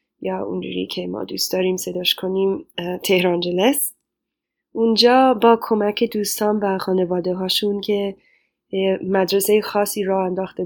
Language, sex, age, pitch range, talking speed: Persian, female, 10-29, 185-220 Hz, 120 wpm